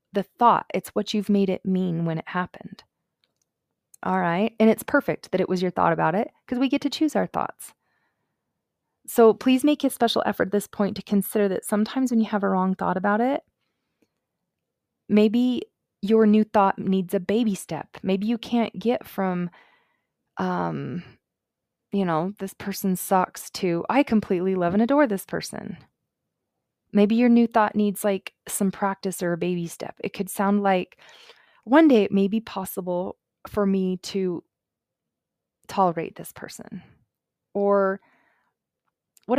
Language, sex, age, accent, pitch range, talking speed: English, female, 20-39, American, 185-220 Hz, 165 wpm